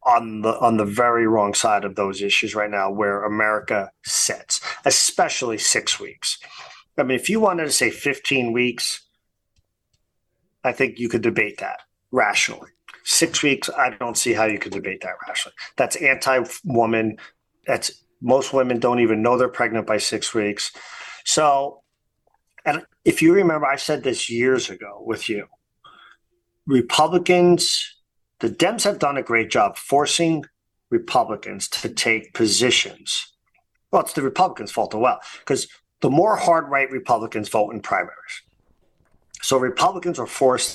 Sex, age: male, 40-59